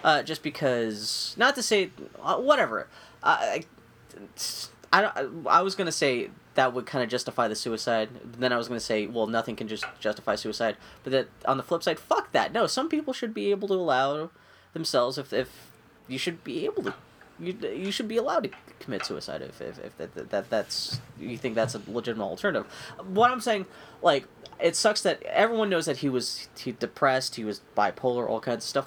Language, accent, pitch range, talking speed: English, American, 115-165 Hz, 210 wpm